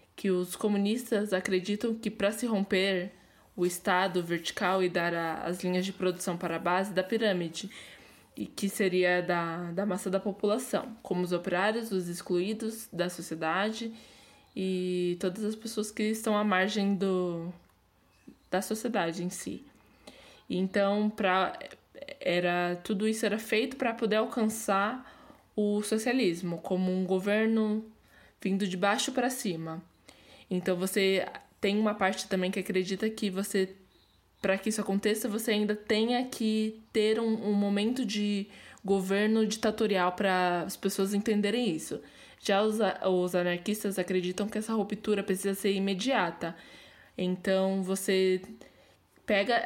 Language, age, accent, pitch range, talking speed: Portuguese, 20-39, Brazilian, 185-215 Hz, 135 wpm